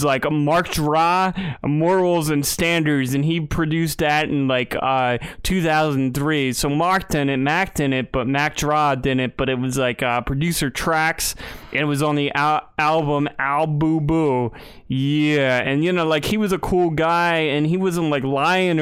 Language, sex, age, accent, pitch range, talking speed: English, male, 20-39, American, 135-160 Hz, 175 wpm